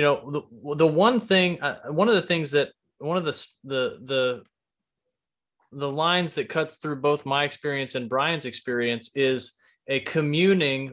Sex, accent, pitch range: male, American, 130-160 Hz